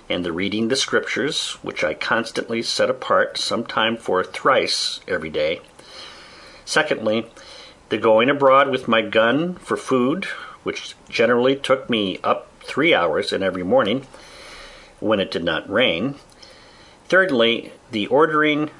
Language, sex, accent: English, male, American